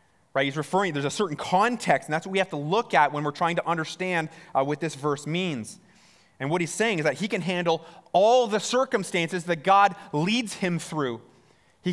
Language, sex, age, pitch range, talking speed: English, male, 30-49, 120-175 Hz, 210 wpm